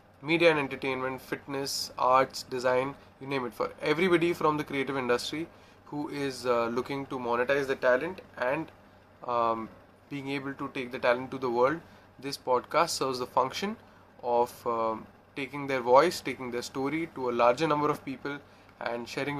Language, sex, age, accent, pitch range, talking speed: English, male, 20-39, Indian, 115-140 Hz, 170 wpm